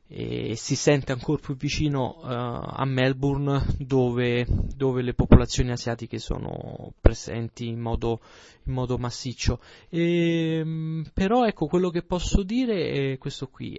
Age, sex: 20-39, male